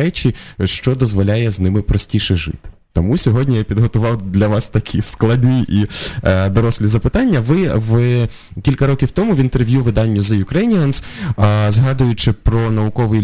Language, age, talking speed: Ukrainian, 20-39, 145 wpm